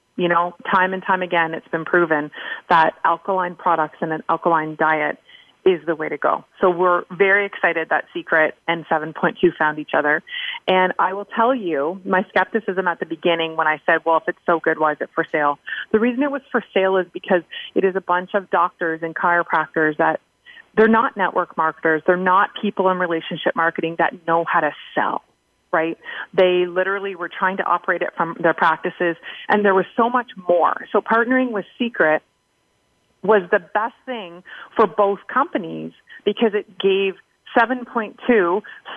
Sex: female